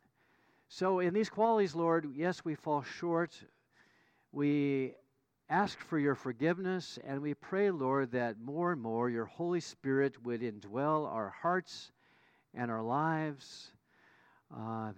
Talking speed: 130 wpm